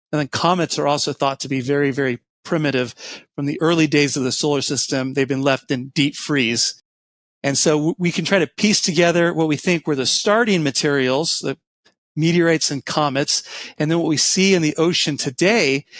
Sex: male